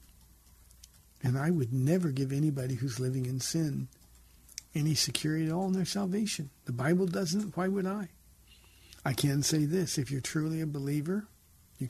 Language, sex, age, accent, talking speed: English, male, 50-69, American, 165 wpm